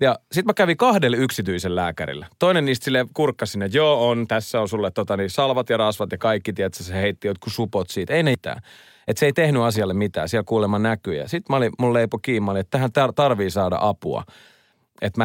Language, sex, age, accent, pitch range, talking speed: Finnish, male, 30-49, native, 105-145 Hz, 205 wpm